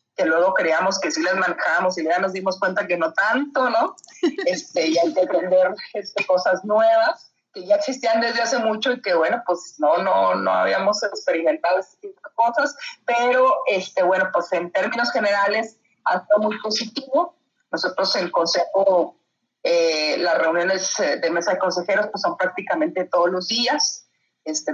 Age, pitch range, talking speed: 40-59, 175-250 Hz, 175 wpm